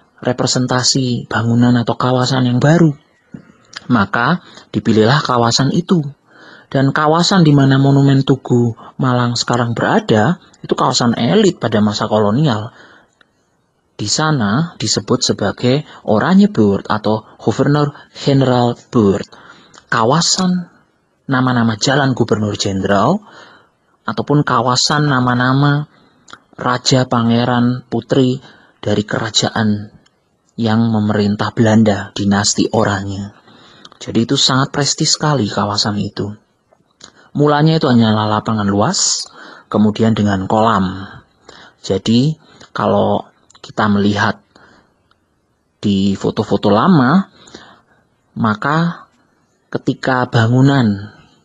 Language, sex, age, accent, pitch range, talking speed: Indonesian, male, 30-49, native, 105-135 Hz, 90 wpm